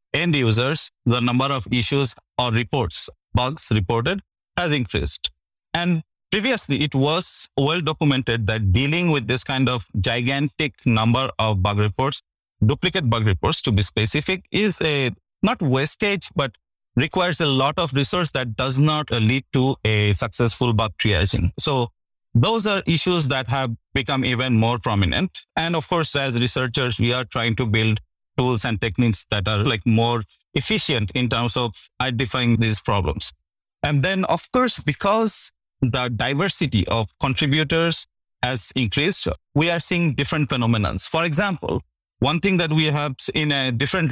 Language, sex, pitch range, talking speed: English, male, 115-150 Hz, 155 wpm